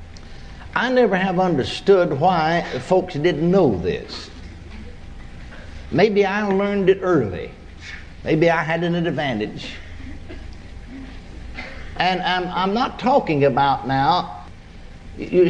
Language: English